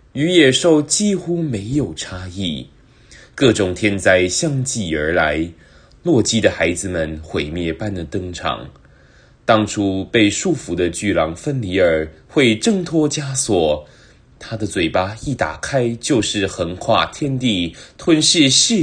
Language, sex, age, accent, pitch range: English, male, 20-39, Chinese, 95-155 Hz